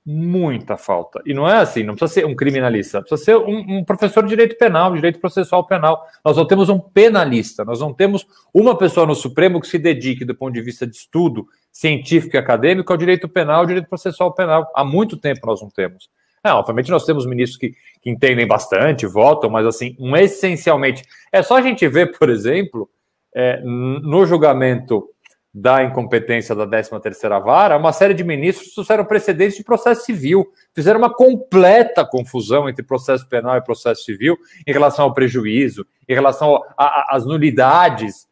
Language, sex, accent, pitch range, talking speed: Portuguese, male, Brazilian, 130-190 Hz, 180 wpm